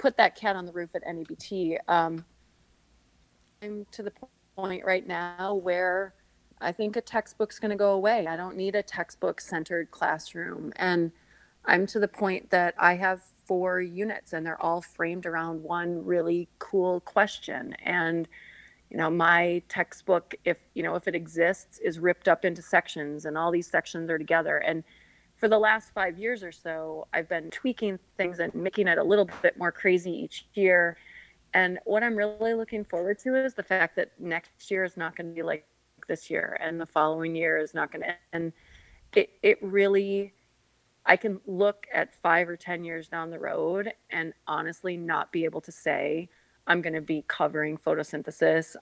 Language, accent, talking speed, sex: English, American, 185 wpm, female